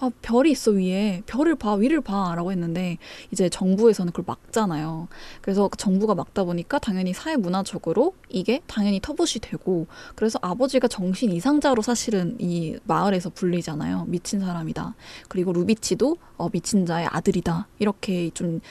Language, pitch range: Korean, 180-245 Hz